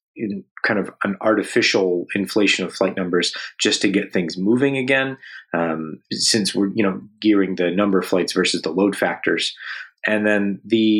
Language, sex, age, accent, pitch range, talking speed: English, male, 30-49, American, 95-115 Hz, 175 wpm